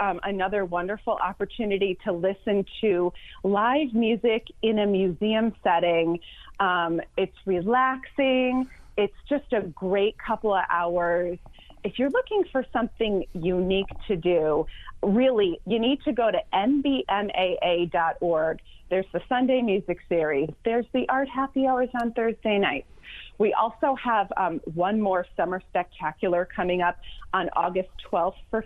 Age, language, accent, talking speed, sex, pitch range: 30-49, English, American, 135 wpm, female, 180-235 Hz